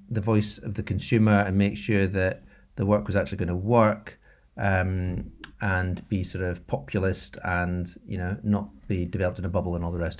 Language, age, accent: English, 40-59, British